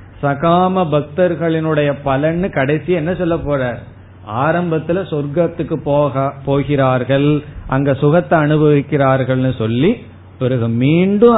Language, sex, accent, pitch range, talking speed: Tamil, male, native, 125-155 Hz, 90 wpm